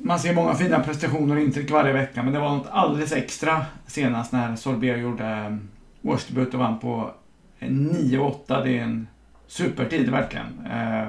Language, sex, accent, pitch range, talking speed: English, male, Swedish, 120-135 Hz, 155 wpm